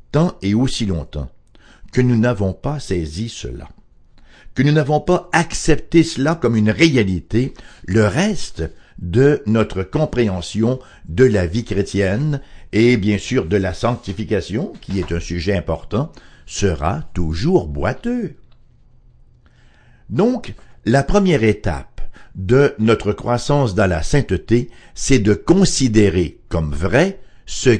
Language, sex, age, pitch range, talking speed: English, male, 60-79, 95-135 Hz, 125 wpm